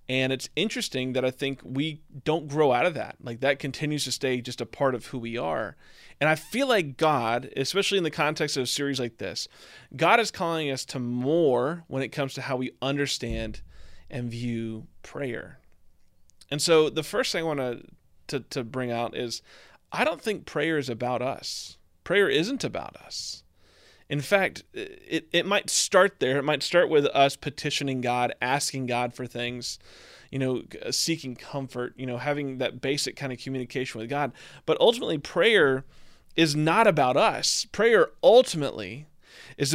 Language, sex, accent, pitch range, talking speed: English, male, American, 125-160 Hz, 180 wpm